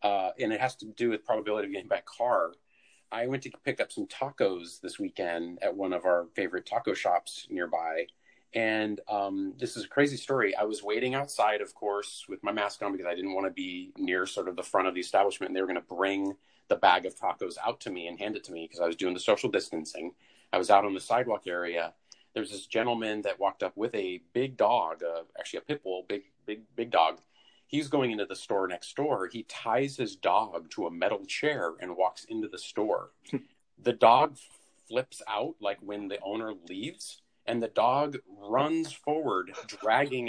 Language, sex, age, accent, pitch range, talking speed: English, male, 40-59, American, 100-150 Hz, 220 wpm